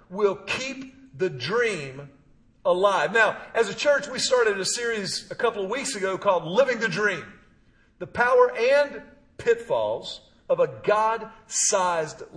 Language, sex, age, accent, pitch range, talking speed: English, male, 50-69, American, 195-270 Hz, 140 wpm